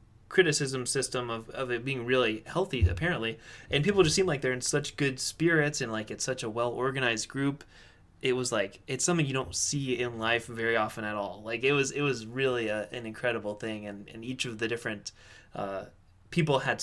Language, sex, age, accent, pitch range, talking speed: English, male, 20-39, American, 115-140 Hz, 215 wpm